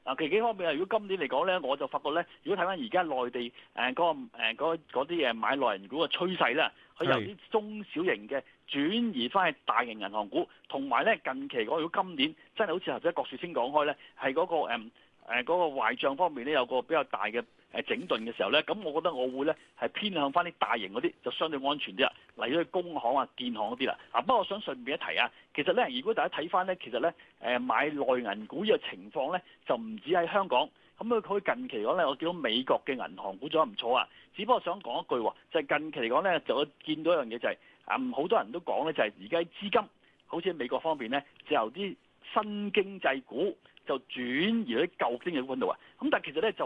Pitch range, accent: 155-235 Hz, native